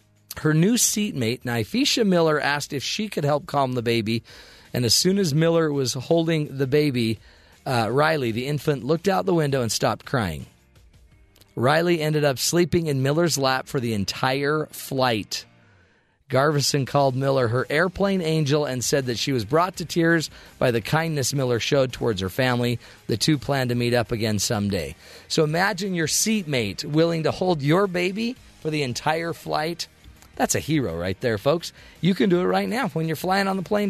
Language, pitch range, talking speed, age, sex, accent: English, 120-165 Hz, 185 wpm, 40-59, male, American